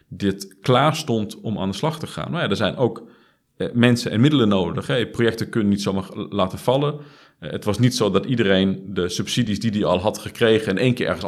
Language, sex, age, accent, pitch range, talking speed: Dutch, male, 40-59, Dutch, 105-130 Hz, 205 wpm